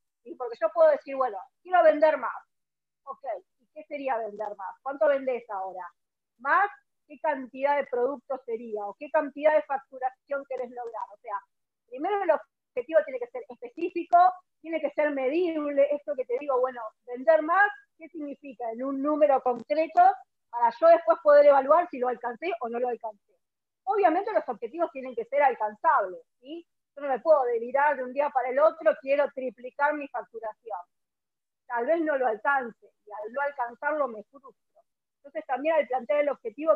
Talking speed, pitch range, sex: 175 wpm, 245-320 Hz, female